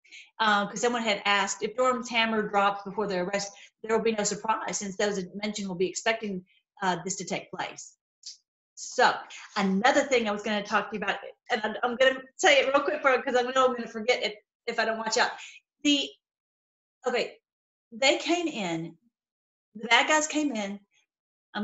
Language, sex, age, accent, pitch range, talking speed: English, female, 40-59, American, 210-270 Hz, 210 wpm